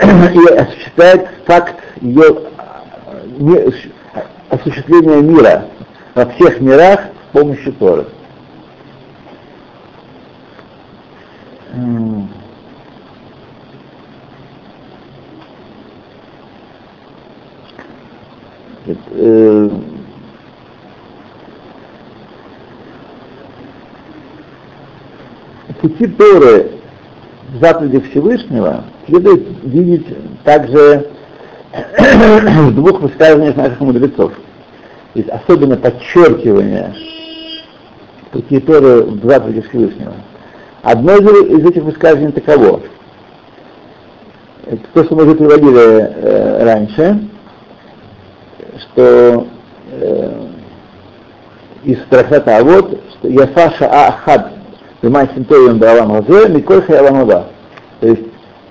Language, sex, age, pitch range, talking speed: Russian, male, 60-79, 120-175 Hz, 60 wpm